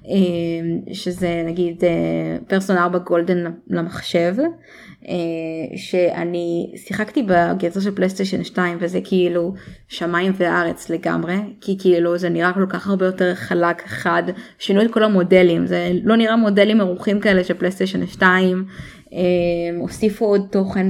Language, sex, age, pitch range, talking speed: Hebrew, female, 20-39, 175-200 Hz, 120 wpm